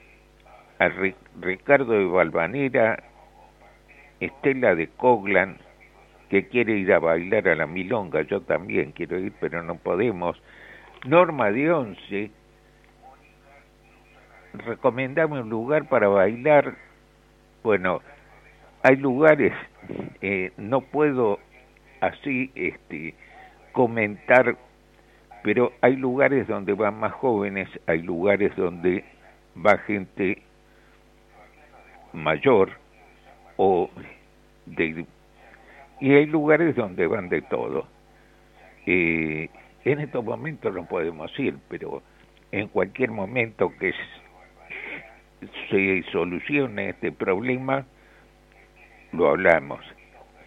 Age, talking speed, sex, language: 60-79, 95 wpm, male, Spanish